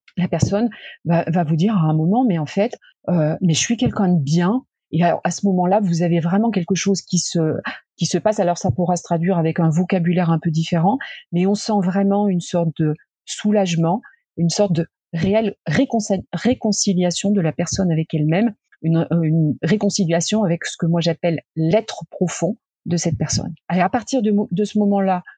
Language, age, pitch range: French, 30-49, 165-205 Hz